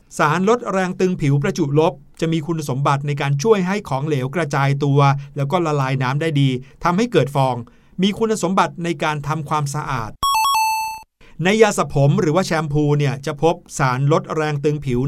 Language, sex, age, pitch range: Thai, male, 60-79, 140-185 Hz